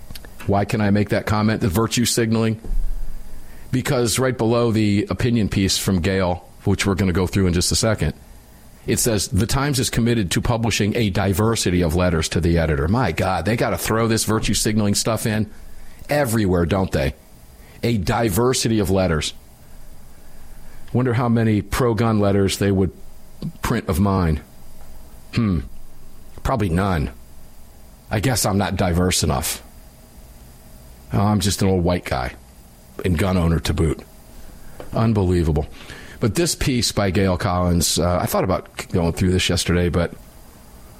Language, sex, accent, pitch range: English, male, American, 75-110 Hz